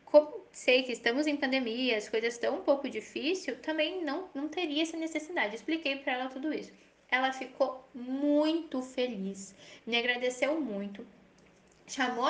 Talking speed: 145 wpm